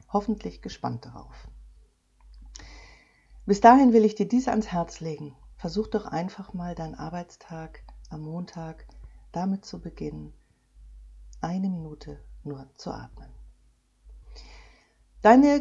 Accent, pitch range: German, 145-200 Hz